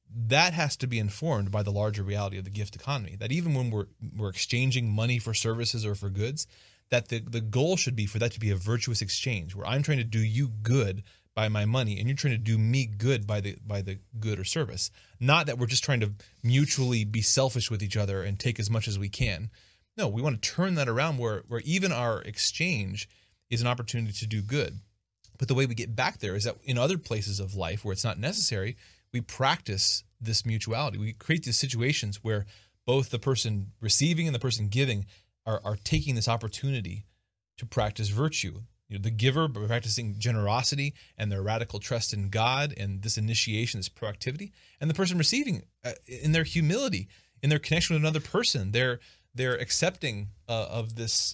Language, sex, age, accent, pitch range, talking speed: English, male, 30-49, American, 105-130 Hz, 210 wpm